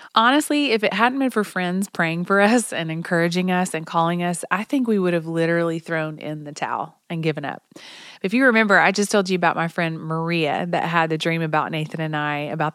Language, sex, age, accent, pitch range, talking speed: English, female, 30-49, American, 160-200 Hz, 230 wpm